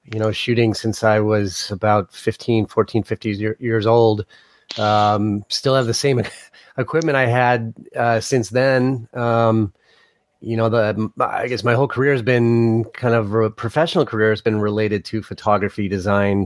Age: 30-49